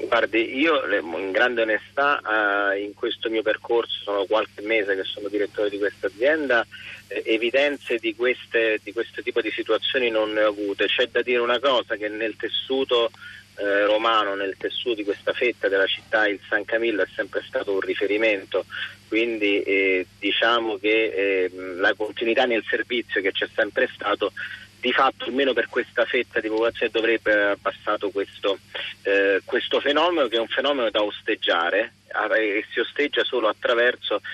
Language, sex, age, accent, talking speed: Italian, male, 30-49, native, 155 wpm